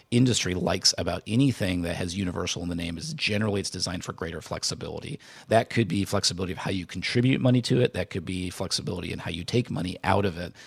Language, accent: English, American